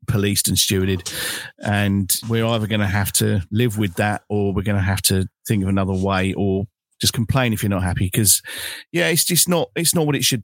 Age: 50-69